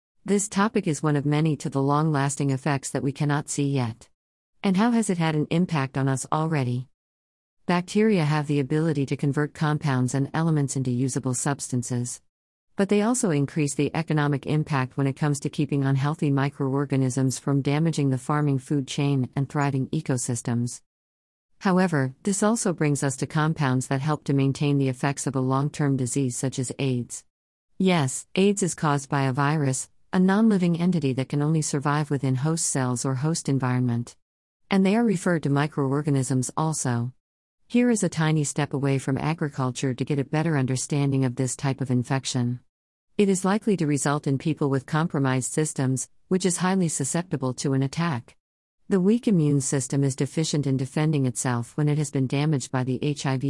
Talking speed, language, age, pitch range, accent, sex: 180 wpm, English, 50-69, 130-155 Hz, American, female